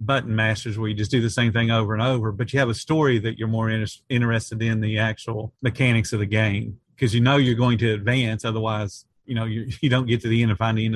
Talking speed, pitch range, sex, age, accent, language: 275 wpm, 115-135 Hz, male, 40-59, American, English